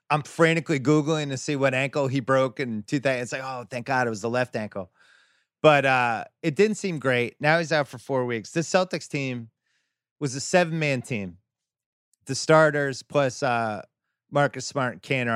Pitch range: 120-155 Hz